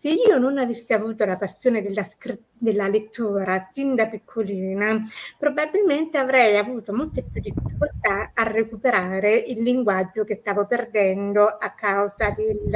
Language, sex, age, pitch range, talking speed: Italian, female, 30-49, 210-255 Hz, 130 wpm